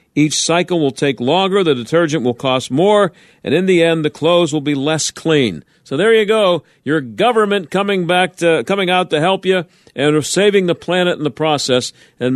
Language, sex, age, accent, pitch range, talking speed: English, male, 50-69, American, 135-170 Hz, 205 wpm